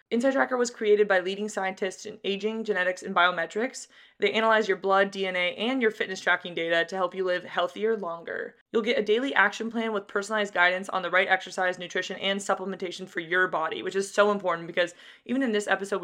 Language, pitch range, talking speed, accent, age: English, 180-205 Hz, 205 wpm, American, 20-39